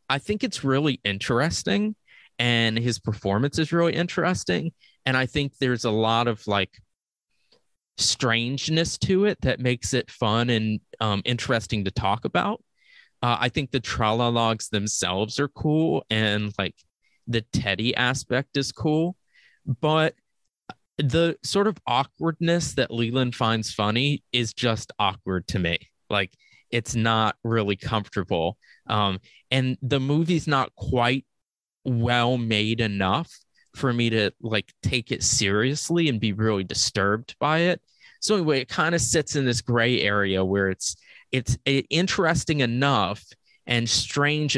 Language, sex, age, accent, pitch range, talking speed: English, male, 20-39, American, 105-135 Hz, 140 wpm